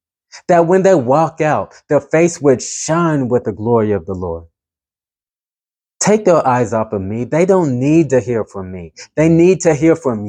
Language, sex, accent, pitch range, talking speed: English, male, American, 95-140 Hz, 190 wpm